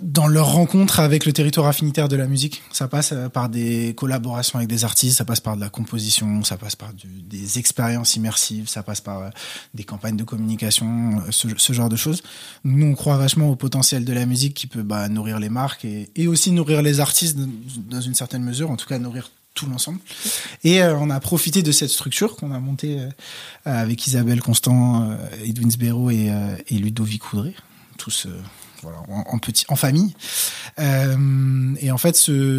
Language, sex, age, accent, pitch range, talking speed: French, male, 20-39, French, 120-150 Hz, 195 wpm